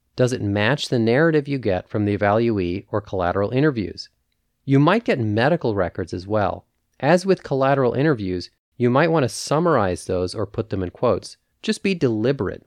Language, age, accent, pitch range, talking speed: English, 30-49, American, 95-130 Hz, 180 wpm